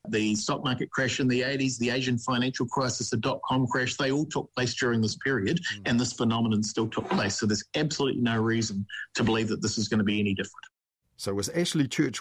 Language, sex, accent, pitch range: English, male, Australian, 120-170 Hz